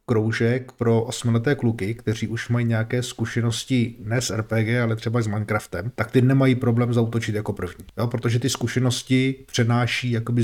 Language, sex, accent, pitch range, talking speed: Czech, male, native, 110-125 Hz, 165 wpm